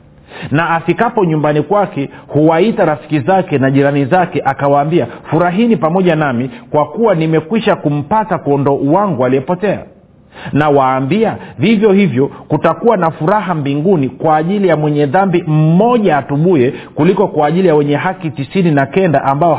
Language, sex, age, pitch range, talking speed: Swahili, male, 50-69, 140-185 Hz, 140 wpm